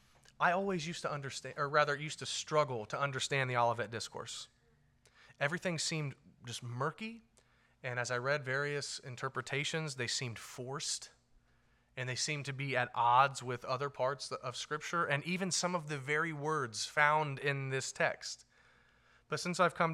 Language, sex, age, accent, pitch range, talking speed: English, male, 30-49, American, 120-160 Hz, 165 wpm